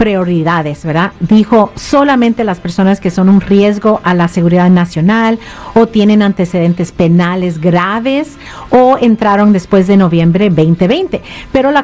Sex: female